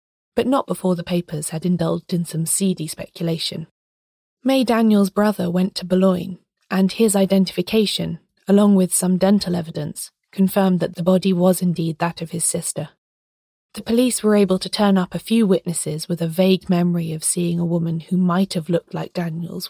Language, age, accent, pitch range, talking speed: English, 20-39, British, 170-195 Hz, 180 wpm